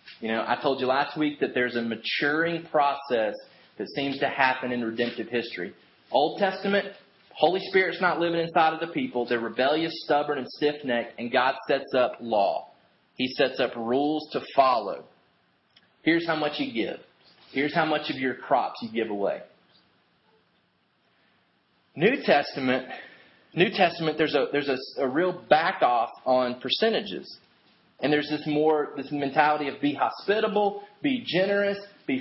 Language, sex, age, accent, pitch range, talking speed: English, male, 30-49, American, 140-190 Hz, 155 wpm